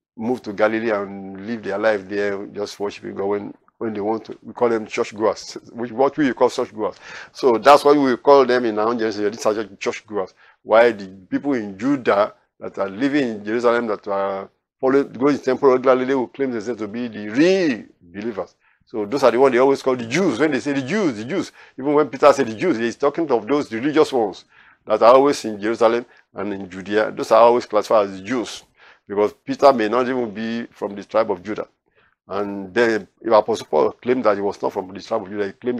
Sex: male